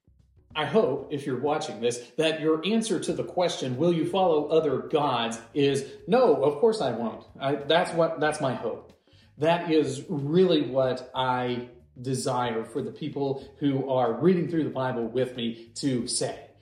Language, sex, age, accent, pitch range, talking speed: English, male, 40-59, American, 130-190 Hz, 165 wpm